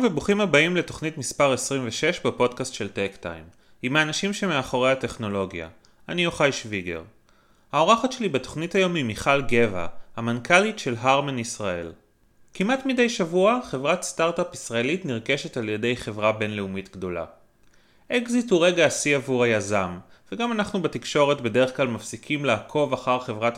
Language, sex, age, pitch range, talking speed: Hebrew, male, 30-49, 110-160 Hz, 135 wpm